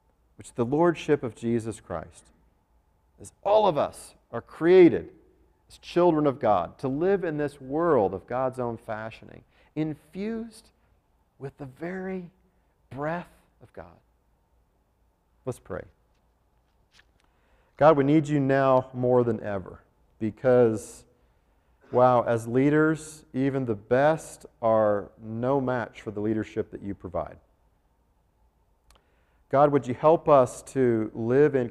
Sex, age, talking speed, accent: male, 40-59, 125 wpm, American